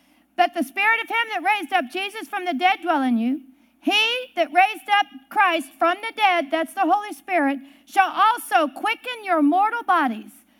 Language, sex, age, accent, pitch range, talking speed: English, female, 50-69, American, 265-380 Hz, 185 wpm